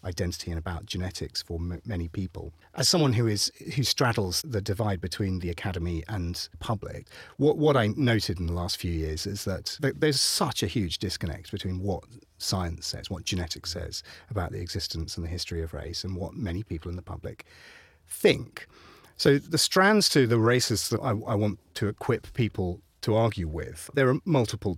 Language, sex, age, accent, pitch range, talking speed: English, male, 30-49, British, 90-120 Hz, 190 wpm